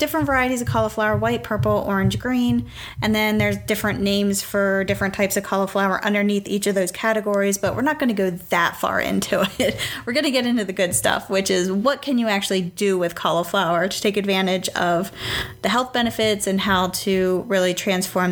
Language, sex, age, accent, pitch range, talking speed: English, female, 10-29, American, 180-220 Hz, 205 wpm